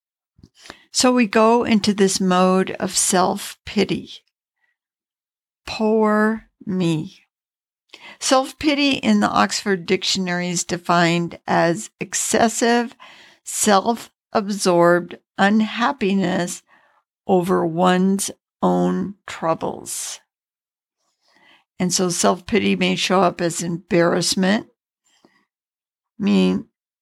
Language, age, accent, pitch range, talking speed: English, 60-79, American, 170-200 Hz, 75 wpm